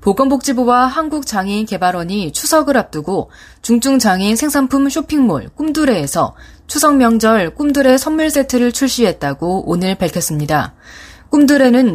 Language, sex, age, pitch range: Korean, female, 20-39, 180-270 Hz